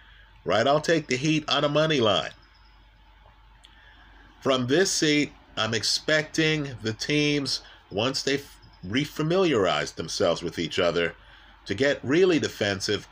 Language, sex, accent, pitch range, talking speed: English, male, American, 110-145 Hz, 125 wpm